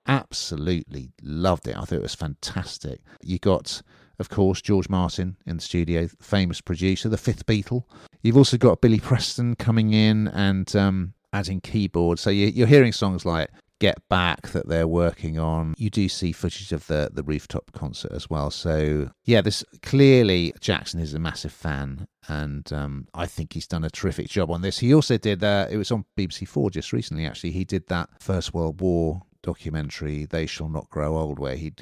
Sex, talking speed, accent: male, 190 wpm, British